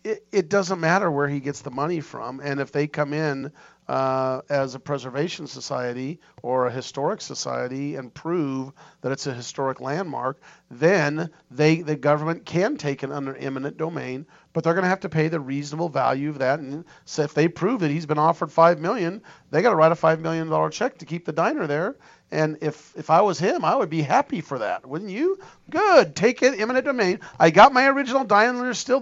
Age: 40-59